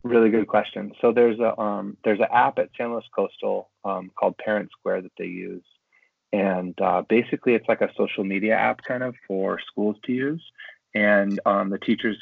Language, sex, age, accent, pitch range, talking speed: English, male, 30-49, American, 95-110 Hz, 195 wpm